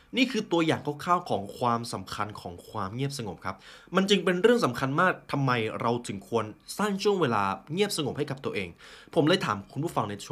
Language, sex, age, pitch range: Thai, male, 20-39, 105-150 Hz